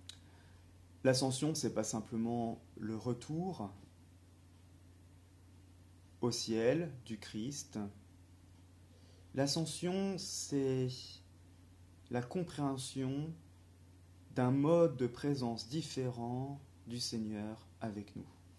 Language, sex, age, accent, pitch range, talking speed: French, male, 30-49, French, 90-125 Hz, 75 wpm